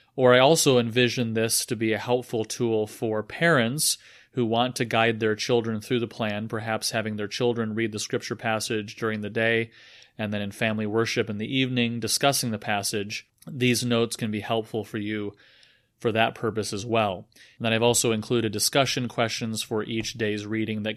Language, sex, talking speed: English, male, 190 wpm